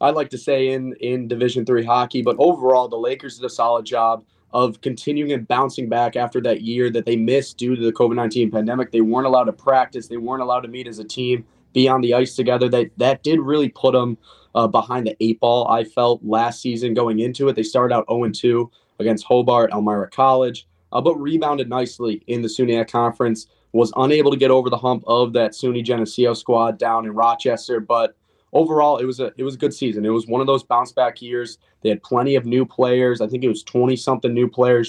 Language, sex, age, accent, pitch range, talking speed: English, male, 20-39, American, 115-130 Hz, 225 wpm